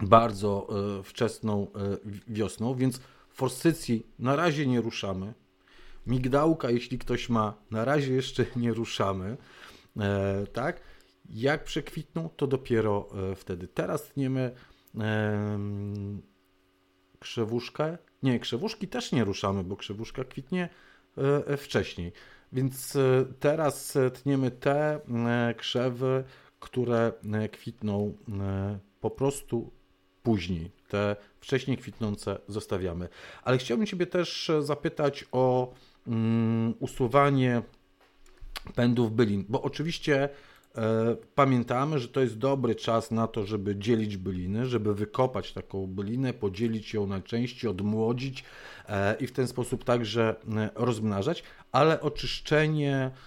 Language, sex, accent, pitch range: Polish, male, native, 105-135 Hz